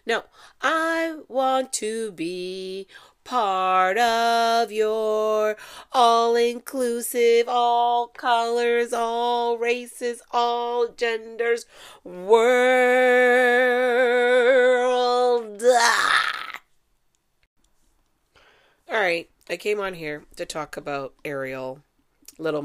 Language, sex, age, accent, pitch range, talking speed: English, female, 30-49, American, 150-240 Hz, 65 wpm